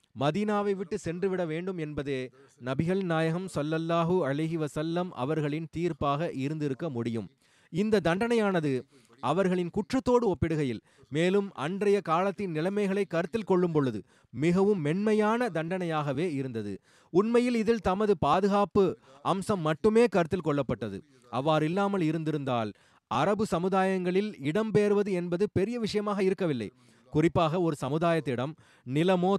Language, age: Tamil, 30-49